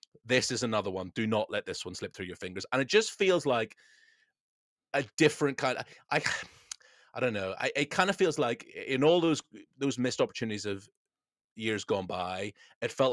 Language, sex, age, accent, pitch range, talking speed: English, male, 30-49, British, 100-125 Hz, 200 wpm